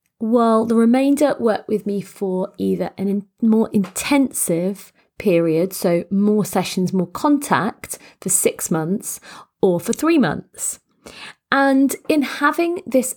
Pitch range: 185-230 Hz